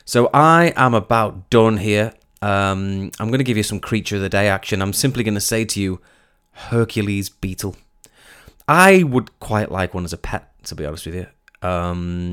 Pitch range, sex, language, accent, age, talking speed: 90-115 Hz, male, English, British, 20-39, 200 wpm